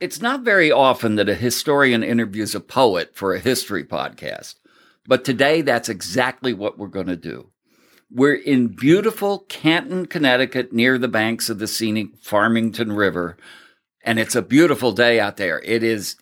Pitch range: 105-140 Hz